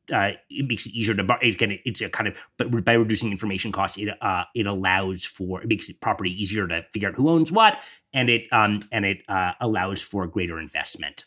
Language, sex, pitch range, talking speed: English, male, 105-130 Hz, 240 wpm